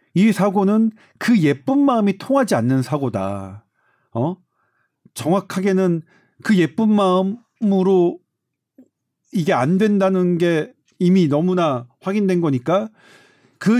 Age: 40-59